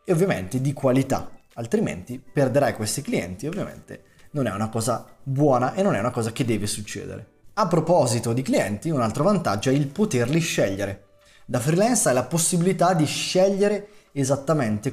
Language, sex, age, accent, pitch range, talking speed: Italian, male, 20-39, native, 120-170 Hz, 165 wpm